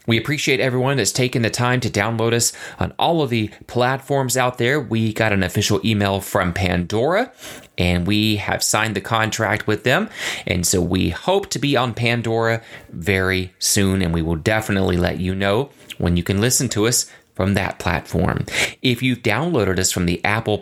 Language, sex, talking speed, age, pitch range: English, male, 190 wpm, 30-49, 95-120 Hz